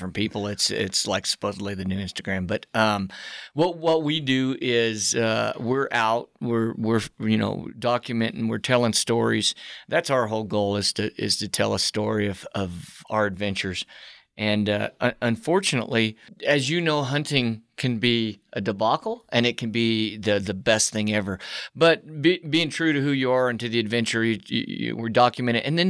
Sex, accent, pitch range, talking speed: male, American, 110-140 Hz, 185 wpm